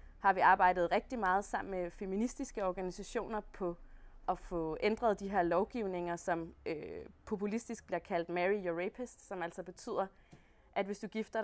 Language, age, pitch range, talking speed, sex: Danish, 20-39, 185-225 Hz, 165 wpm, female